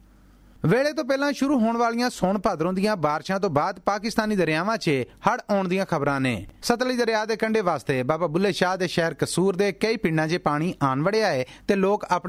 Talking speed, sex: 165 wpm, male